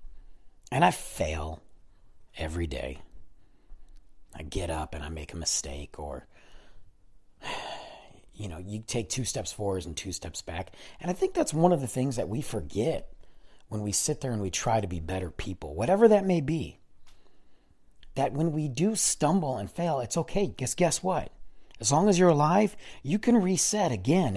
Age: 40-59